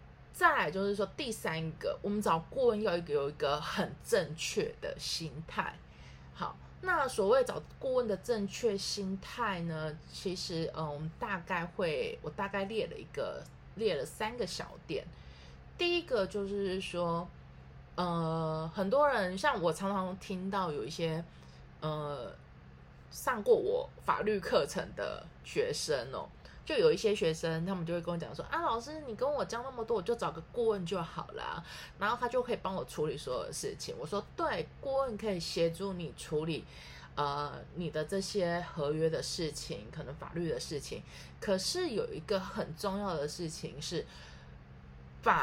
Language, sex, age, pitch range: Chinese, female, 20-39, 155-220 Hz